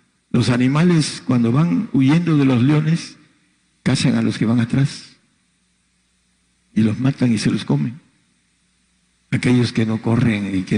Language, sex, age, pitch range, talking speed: Spanish, male, 60-79, 115-135 Hz, 150 wpm